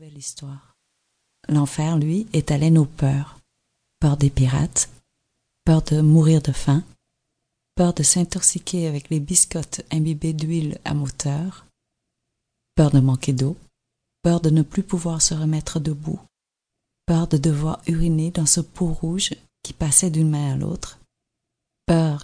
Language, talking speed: French, 140 wpm